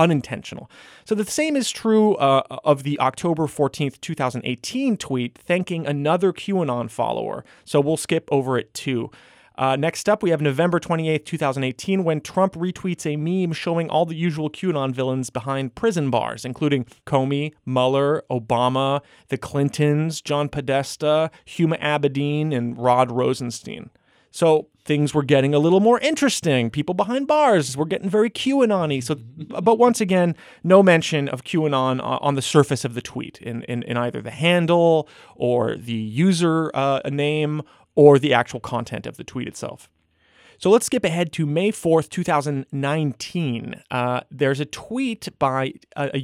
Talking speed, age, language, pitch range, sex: 160 wpm, 30-49, English, 135-175 Hz, male